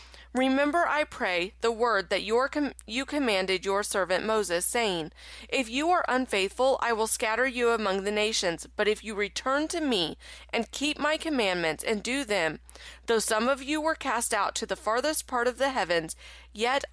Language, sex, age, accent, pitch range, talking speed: English, female, 30-49, American, 190-260 Hz, 180 wpm